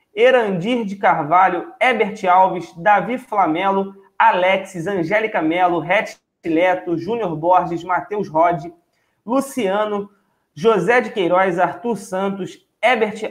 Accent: Brazilian